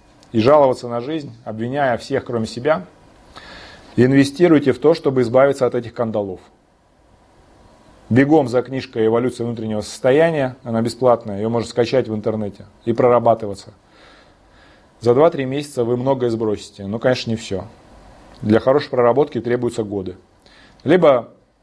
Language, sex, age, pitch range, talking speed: Russian, male, 30-49, 105-130 Hz, 130 wpm